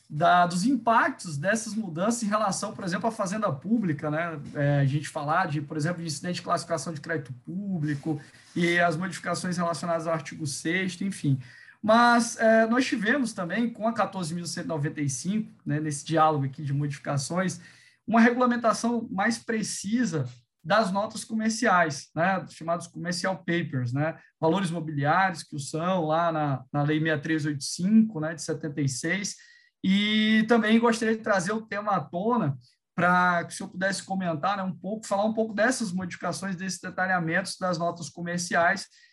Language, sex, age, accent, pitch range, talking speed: Portuguese, male, 20-39, Brazilian, 165-220 Hz, 155 wpm